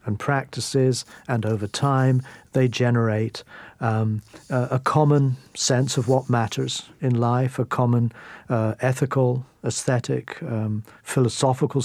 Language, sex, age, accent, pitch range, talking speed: English, male, 50-69, British, 120-140 Hz, 120 wpm